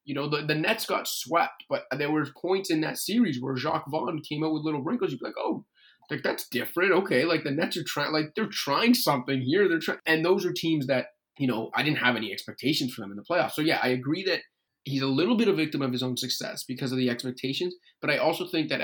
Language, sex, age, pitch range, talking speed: English, male, 20-39, 125-165 Hz, 265 wpm